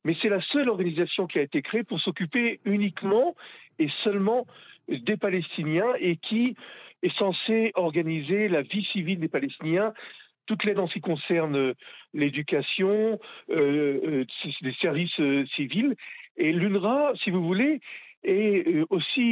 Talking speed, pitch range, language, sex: 145 wpm, 150-220 Hz, French, male